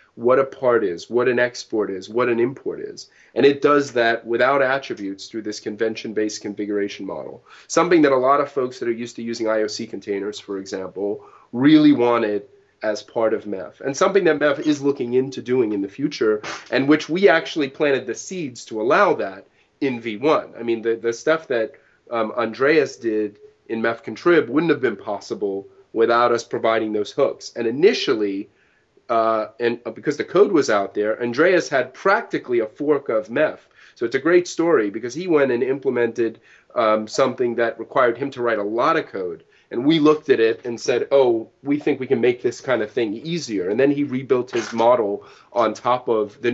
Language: English